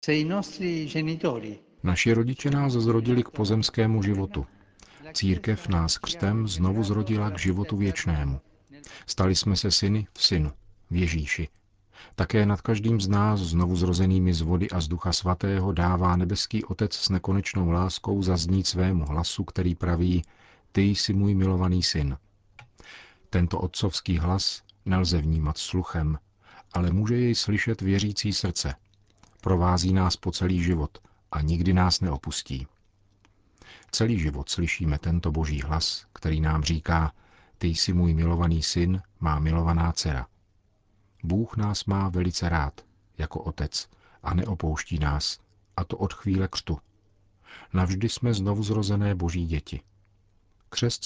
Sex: male